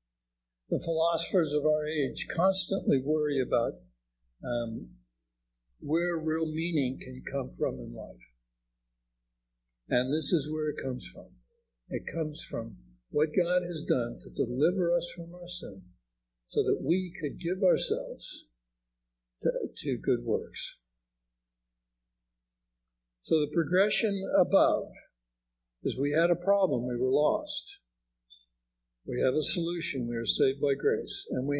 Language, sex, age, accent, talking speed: English, male, 60-79, American, 135 wpm